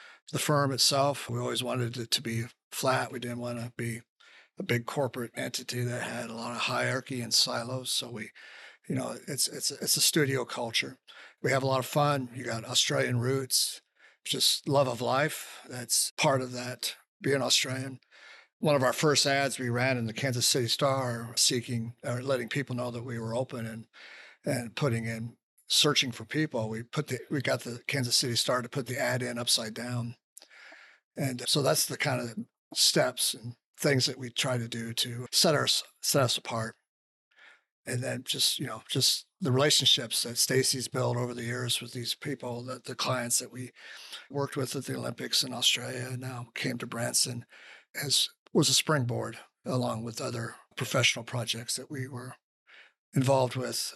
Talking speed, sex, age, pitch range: 190 wpm, male, 50-69, 120-135 Hz